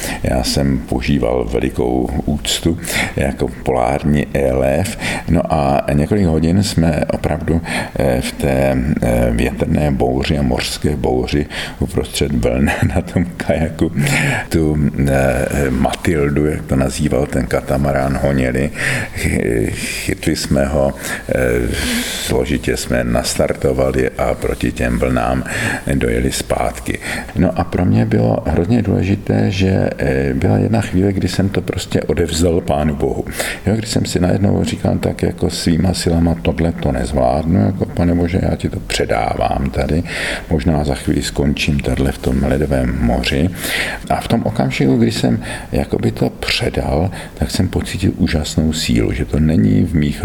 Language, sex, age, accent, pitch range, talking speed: Czech, male, 50-69, native, 70-90 Hz, 135 wpm